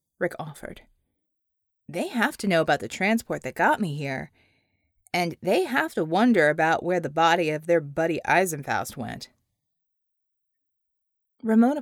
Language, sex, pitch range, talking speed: English, female, 175-250 Hz, 140 wpm